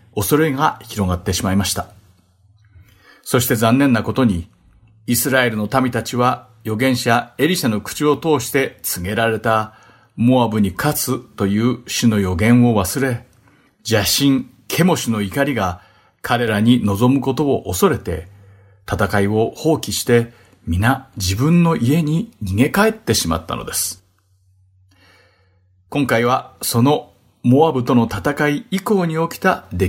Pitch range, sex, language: 100-135 Hz, male, Japanese